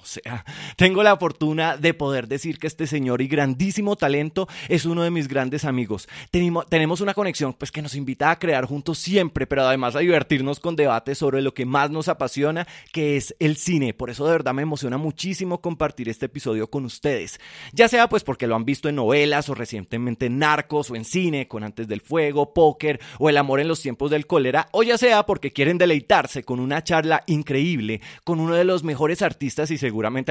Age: 20-39